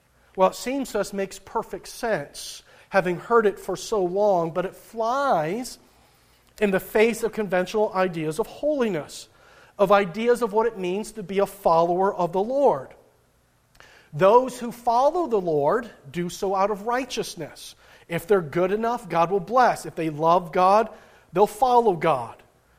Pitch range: 170-210 Hz